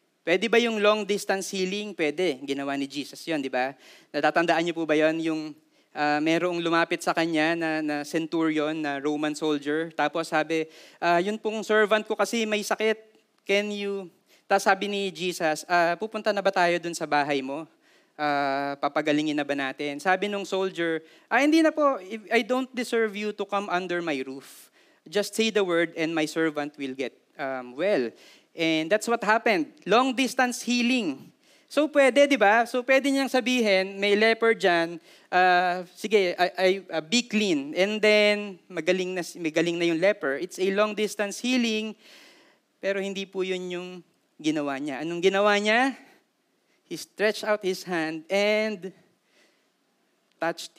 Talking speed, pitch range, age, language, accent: 165 wpm, 160-215 Hz, 20-39, Filipino, native